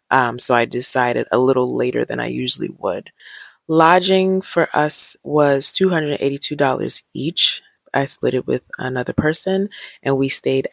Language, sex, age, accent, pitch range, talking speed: English, female, 20-39, American, 130-155 Hz, 145 wpm